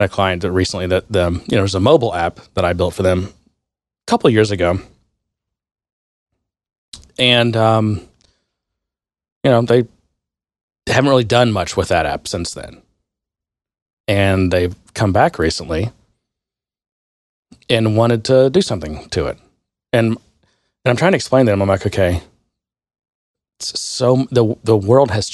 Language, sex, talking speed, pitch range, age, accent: English, male, 150 wpm, 95-125 Hz, 30-49, American